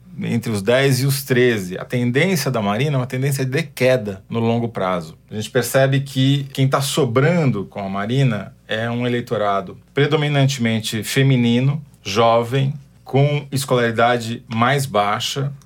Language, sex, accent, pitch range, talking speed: Portuguese, male, Brazilian, 115-135 Hz, 145 wpm